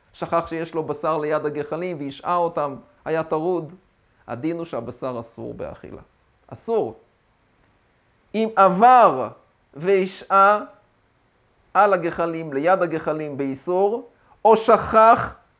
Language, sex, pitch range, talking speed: Hebrew, male, 135-190 Hz, 100 wpm